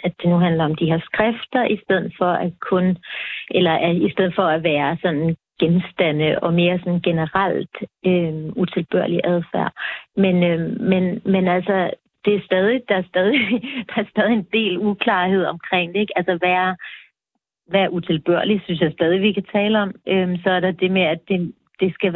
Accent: native